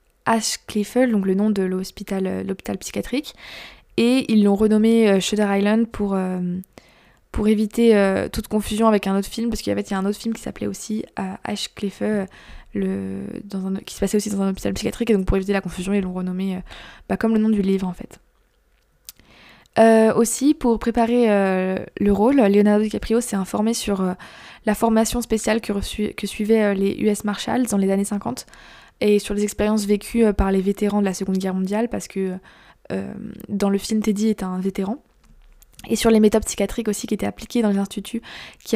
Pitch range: 190-220 Hz